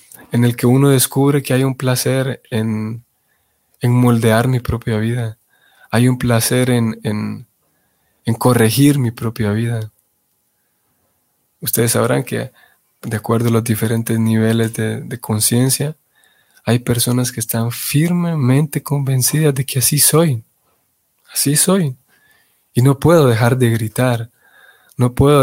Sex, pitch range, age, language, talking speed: male, 115-135 Hz, 20-39, Spanish, 130 wpm